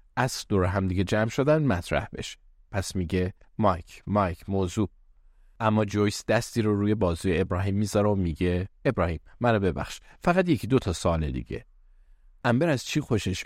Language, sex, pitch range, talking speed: Persian, male, 85-110 Hz, 160 wpm